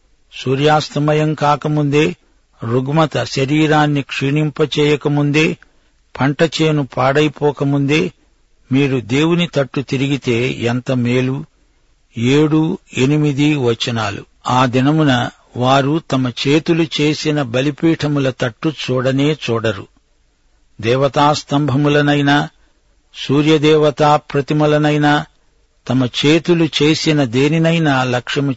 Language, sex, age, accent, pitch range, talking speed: Telugu, male, 60-79, native, 125-150 Hz, 70 wpm